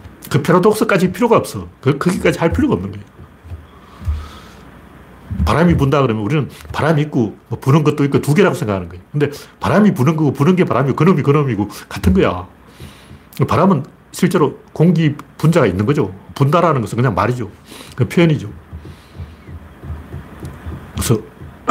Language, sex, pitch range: Korean, male, 95-150 Hz